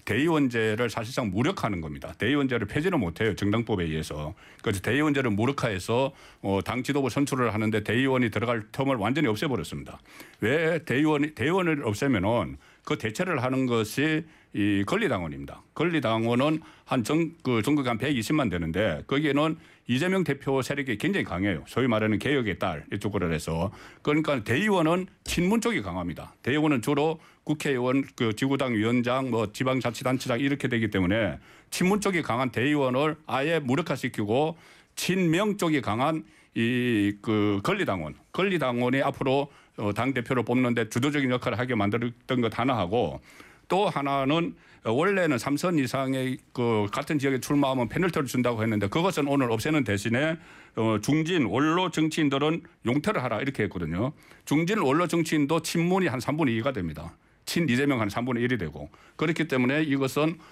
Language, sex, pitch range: Korean, male, 115-150 Hz